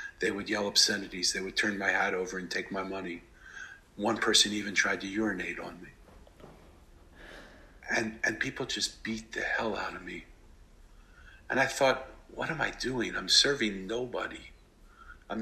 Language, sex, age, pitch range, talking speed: English, male, 50-69, 80-110 Hz, 165 wpm